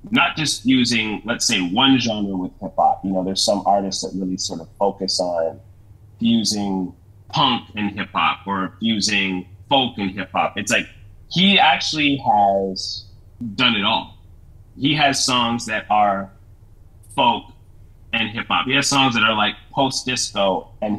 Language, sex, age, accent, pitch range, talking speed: English, male, 30-49, American, 100-125 Hz, 150 wpm